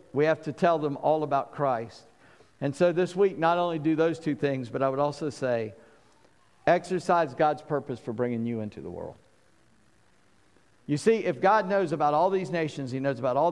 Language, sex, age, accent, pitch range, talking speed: English, male, 50-69, American, 130-165 Hz, 200 wpm